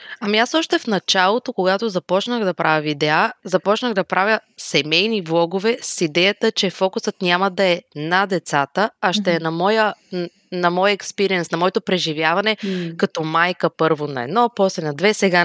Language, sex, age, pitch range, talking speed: Bulgarian, female, 20-39, 175-215 Hz, 170 wpm